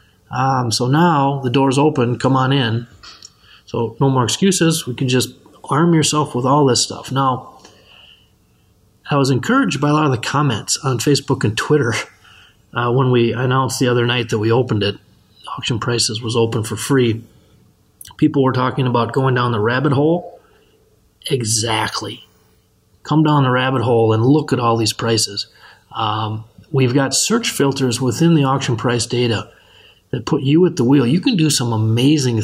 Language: English